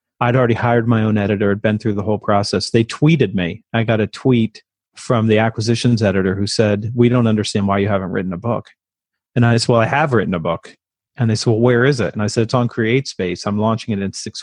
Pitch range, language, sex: 105-120 Hz, English, male